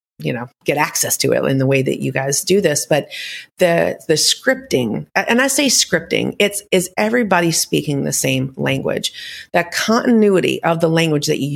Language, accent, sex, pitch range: English, American, female, 155-200 Hz